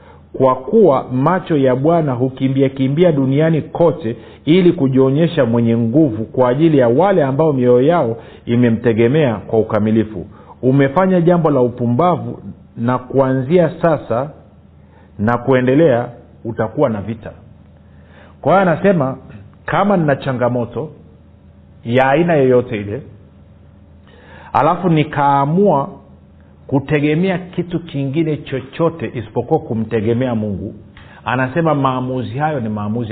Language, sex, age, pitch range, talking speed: Swahili, male, 50-69, 105-150 Hz, 105 wpm